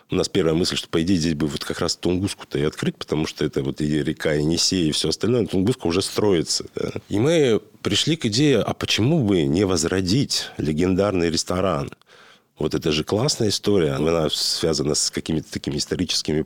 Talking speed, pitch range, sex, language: 190 wpm, 75-95 Hz, male, Russian